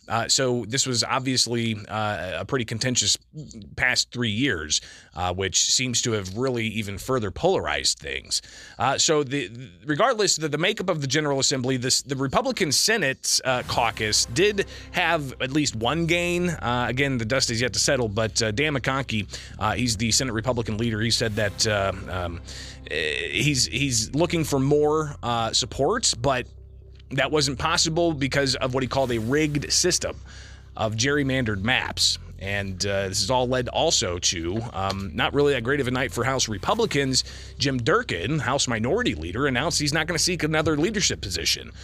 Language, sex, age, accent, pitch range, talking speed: English, male, 30-49, American, 110-150 Hz, 175 wpm